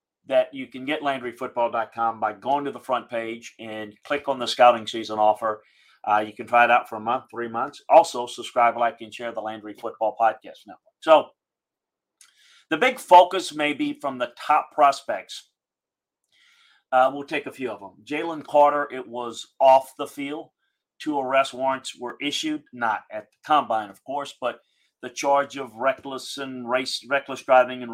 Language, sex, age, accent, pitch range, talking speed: English, male, 40-59, American, 115-140 Hz, 180 wpm